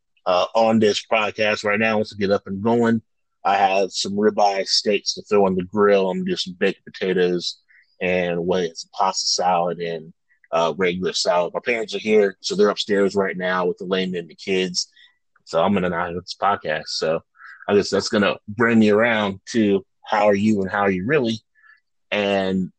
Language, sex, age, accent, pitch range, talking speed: English, male, 30-49, American, 95-115 Hz, 205 wpm